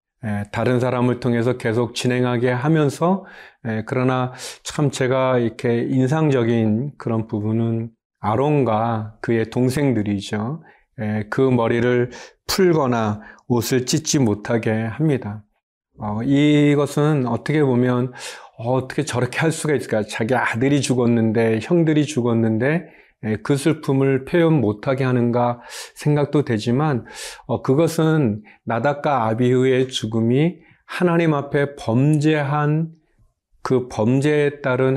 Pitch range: 115-145 Hz